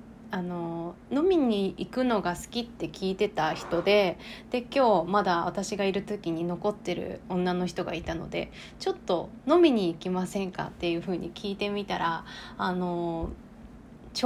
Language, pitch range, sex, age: Japanese, 180-240 Hz, female, 20-39